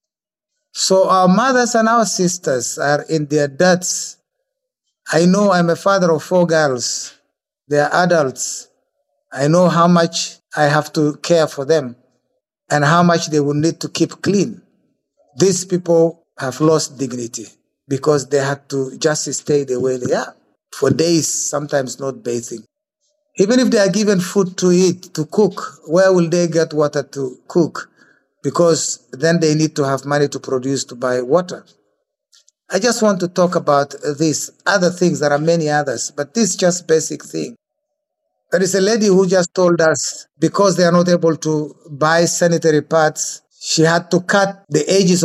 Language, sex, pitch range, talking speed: English, male, 145-180 Hz, 175 wpm